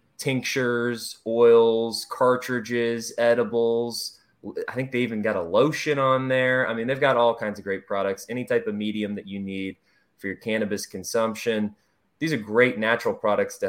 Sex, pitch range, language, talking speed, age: male, 100-120 Hz, English, 170 wpm, 20-39